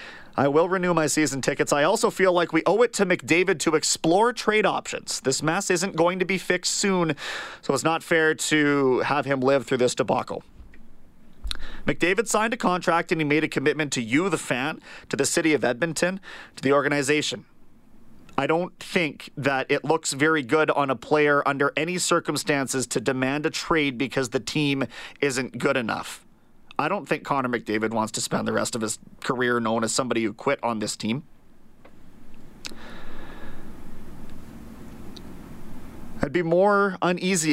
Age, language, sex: 30-49, English, male